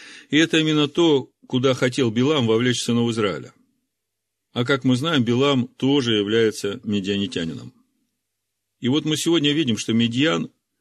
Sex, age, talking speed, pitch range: male, 40-59, 140 wpm, 100-130 Hz